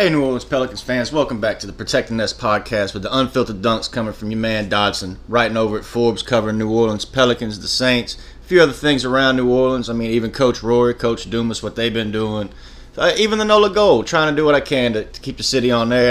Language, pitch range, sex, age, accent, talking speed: English, 110-135 Hz, male, 30-49, American, 250 wpm